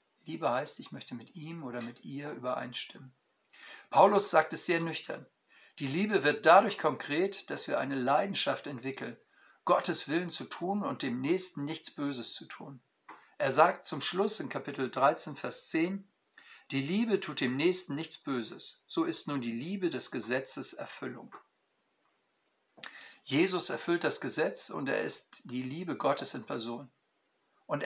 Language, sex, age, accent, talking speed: German, male, 50-69, German, 155 wpm